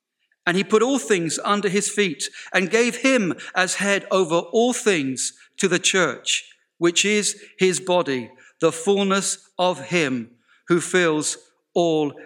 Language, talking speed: English, 145 wpm